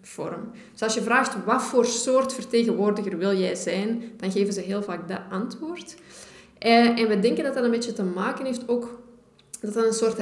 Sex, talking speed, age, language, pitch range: female, 205 wpm, 20-39, Dutch, 195-235 Hz